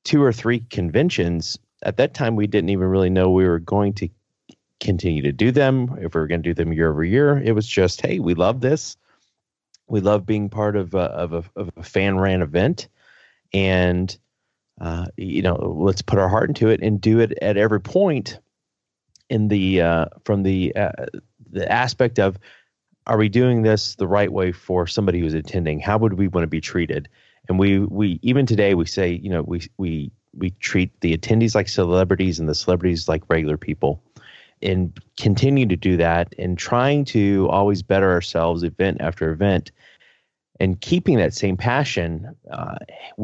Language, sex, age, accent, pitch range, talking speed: English, male, 30-49, American, 90-110 Hz, 190 wpm